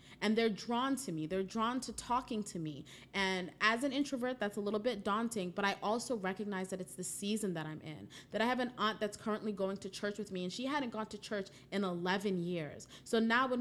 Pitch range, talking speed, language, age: 185-225 Hz, 240 wpm, English, 30-49